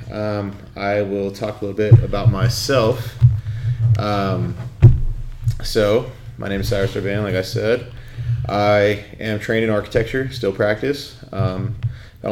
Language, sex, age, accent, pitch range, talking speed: English, male, 30-49, American, 100-120 Hz, 130 wpm